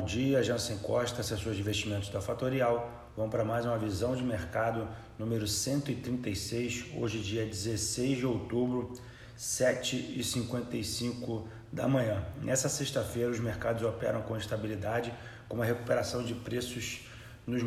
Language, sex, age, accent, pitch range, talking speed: Portuguese, male, 30-49, Brazilian, 105-120 Hz, 130 wpm